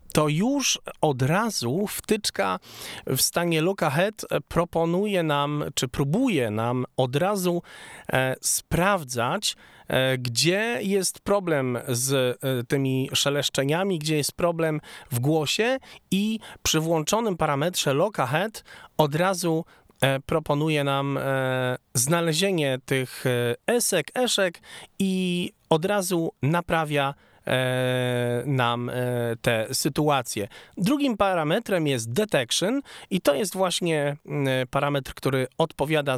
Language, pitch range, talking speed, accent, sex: Polish, 130-185 Hz, 95 wpm, native, male